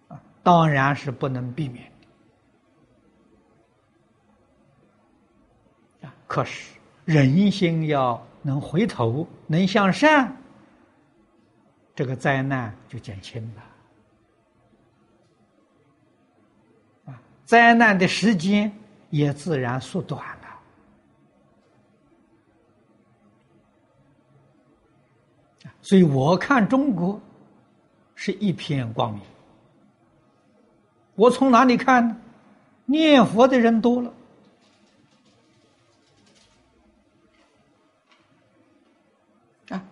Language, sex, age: Chinese, male, 60-79